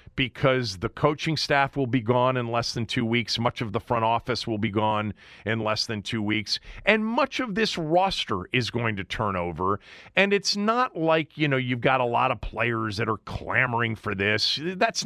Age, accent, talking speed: 40-59, American, 210 wpm